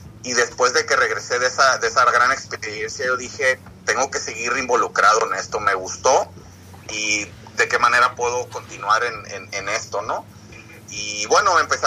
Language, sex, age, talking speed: Spanish, male, 30-49, 170 wpm